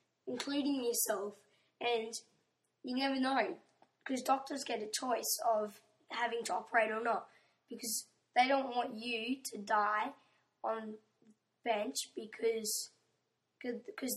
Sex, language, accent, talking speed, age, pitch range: female, English, Australian, 120 wpm, 10-29, 220-260 Hz